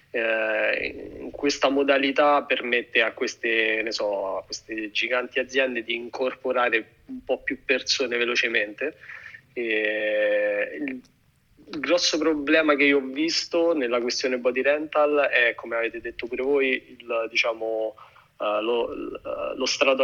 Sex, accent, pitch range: male, native, 115-135 Hz